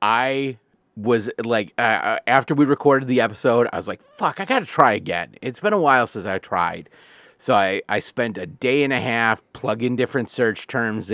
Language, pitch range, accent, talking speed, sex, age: English, 110-145 Hz, American, 200 wpm, male, 40-59